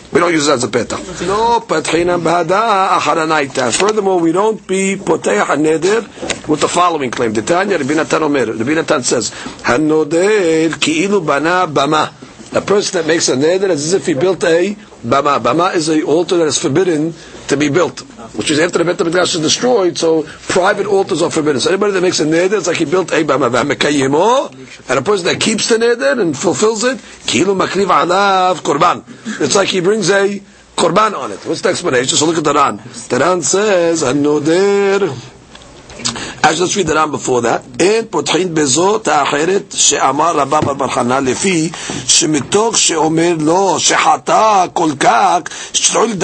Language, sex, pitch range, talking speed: English, male, 165-210 Hz, 155 wpm